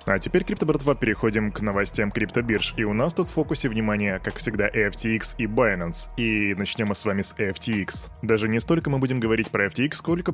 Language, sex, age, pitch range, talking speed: Russian, male, 20-39, 110-145 Hz, 215 wpm